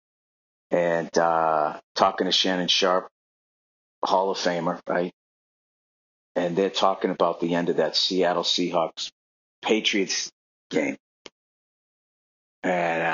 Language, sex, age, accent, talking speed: English, male, 50-69, American, 105 wpm